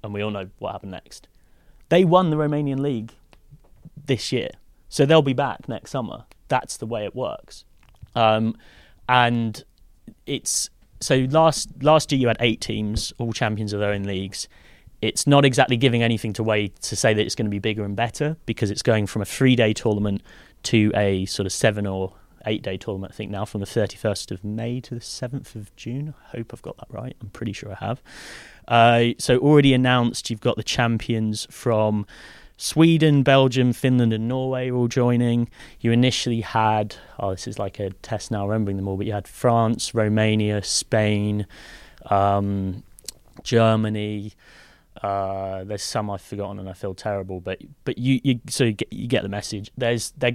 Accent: British